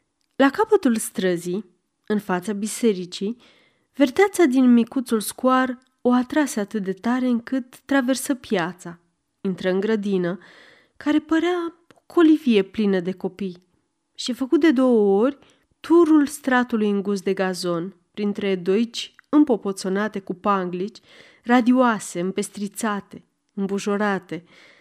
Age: 30-49